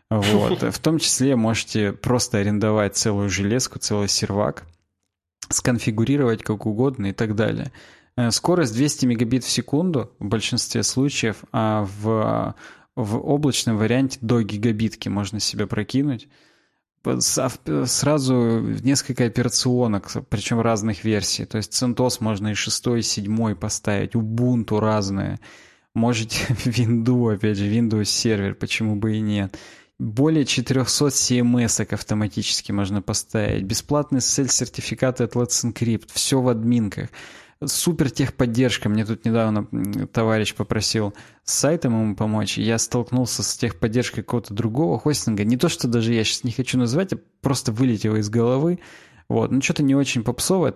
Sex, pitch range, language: male, 105-125 Hz, Russian